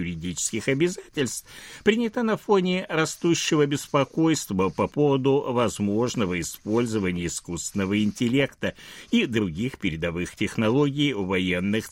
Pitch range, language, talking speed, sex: 105-165 Hz, Russian, 95 wpm, male